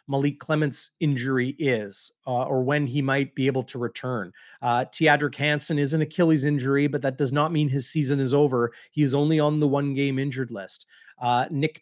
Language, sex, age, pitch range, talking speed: English, male, 30-49, 130-155 Hz, 200 wpm